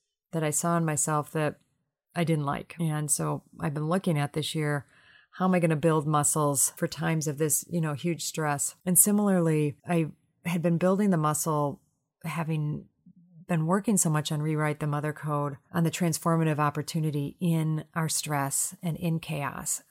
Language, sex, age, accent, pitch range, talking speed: English, female, 30-49, American, 155-175 Hz, 180 wpm